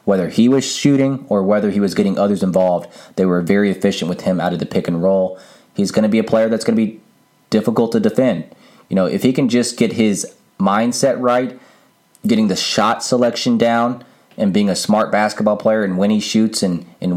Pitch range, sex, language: 95-120 Hz, male, English